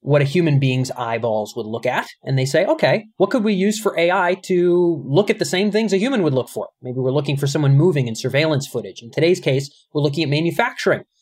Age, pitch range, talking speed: 30-49, 130-180 Hz, 240 wpm